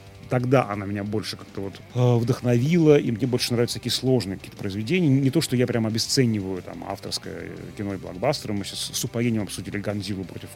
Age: 30-49